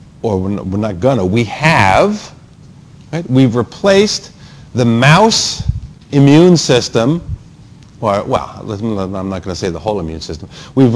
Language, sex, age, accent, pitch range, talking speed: English, male, 50-69, American, 115-145 Hz, 135 wpm